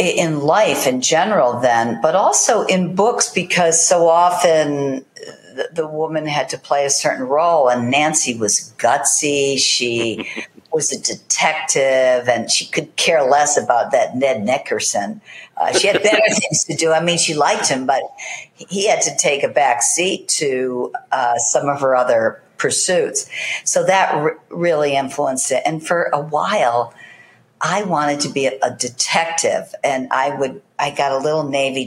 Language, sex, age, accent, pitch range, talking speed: English, female, 50-69, American, 125-160 Hz, 165 wpm